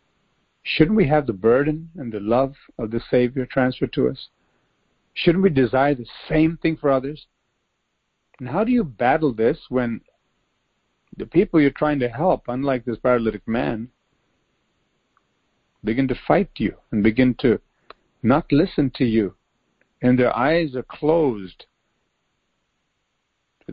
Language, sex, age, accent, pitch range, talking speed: English, male, 50-69, American, 120-150 Hz, 140 wpm